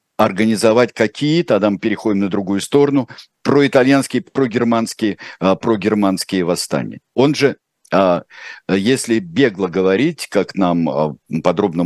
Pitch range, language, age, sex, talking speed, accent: 85-115 Hz, Russian, 50-69, male, 115 wpm, native